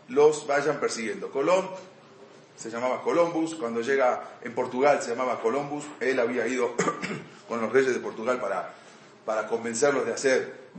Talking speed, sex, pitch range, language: 150 wpm, male, 120-175 Hz, English